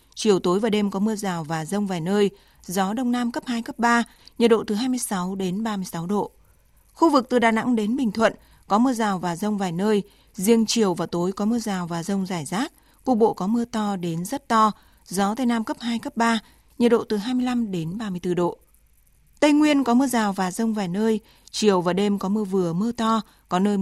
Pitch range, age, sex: 190-230 Hz, 20-39, female